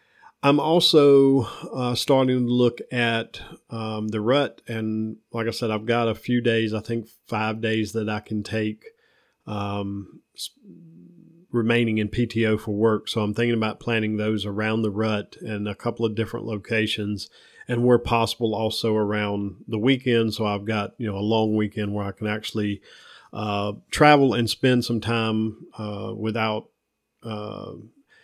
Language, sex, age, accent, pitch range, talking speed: English, male, 40-59, American, 105-120 Hz, 160 wpm